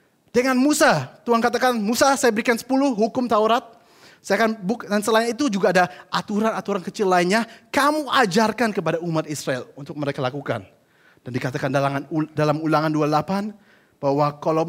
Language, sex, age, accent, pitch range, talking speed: Indonesian, male, 30-49, native, 135-205 Hz, 150 wpm